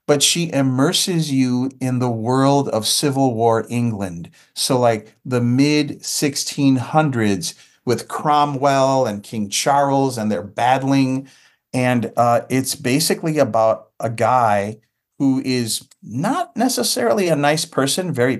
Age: 40-59